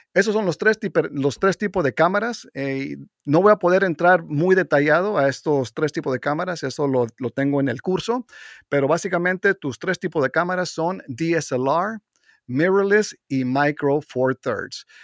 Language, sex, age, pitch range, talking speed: English, male, 40-59, 130-170 Hz, 180 wpm